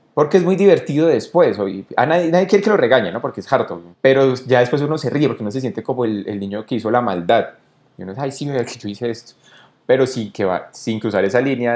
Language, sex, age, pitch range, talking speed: Spanish, male, 20-39, 95-130 Hz, 260 wpm